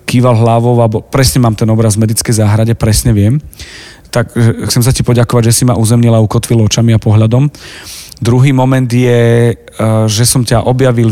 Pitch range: 115-135 Hz